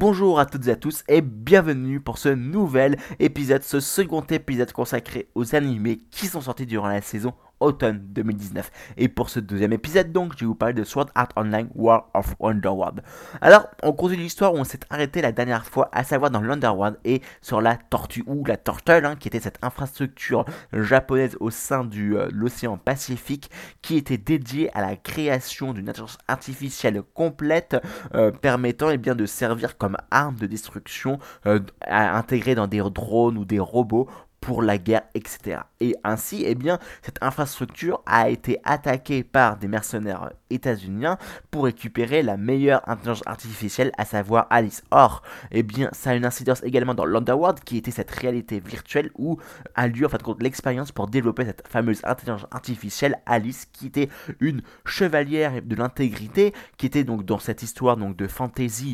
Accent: French